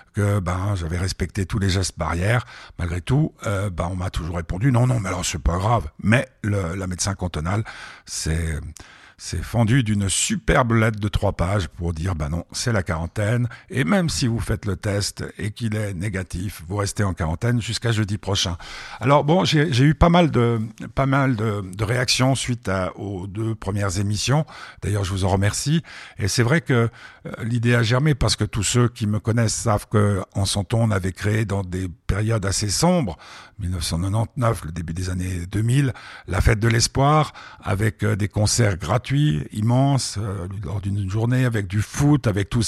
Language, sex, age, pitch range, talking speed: French, male, 60-79, 95-120 Hz, 195 wpm